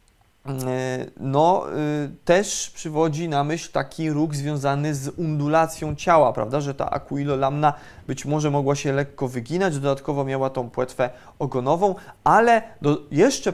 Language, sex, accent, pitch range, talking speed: Polish, male, native, 140-185 Hz, 130 wpm